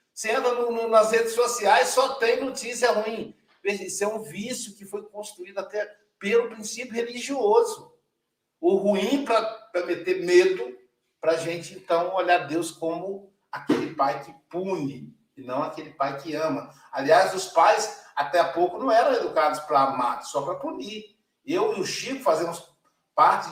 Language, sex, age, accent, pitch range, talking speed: Portuguese, male, 60-79, Brazilian, 165-250 Hz, 160 wpm